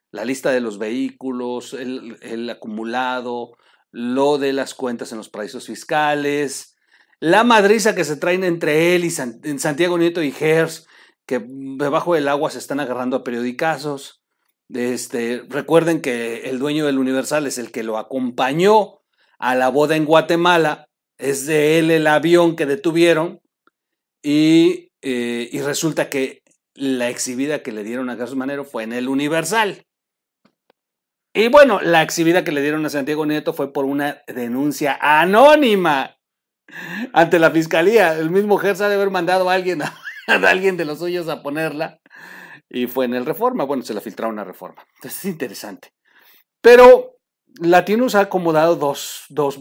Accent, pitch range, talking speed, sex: Mexican, 130-170 Hz, 160 wpm, male